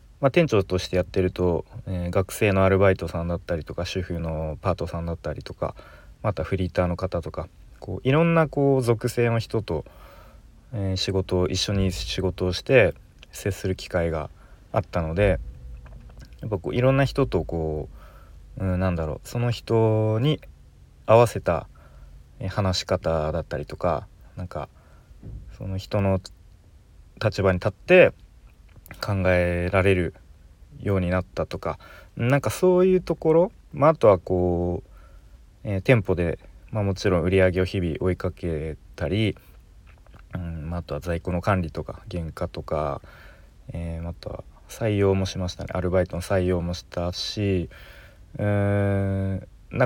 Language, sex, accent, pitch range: Japanese, male, native, 85-110 Hz